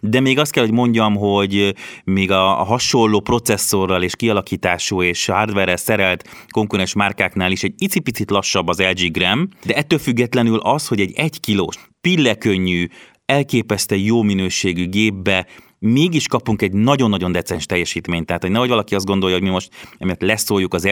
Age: 30-49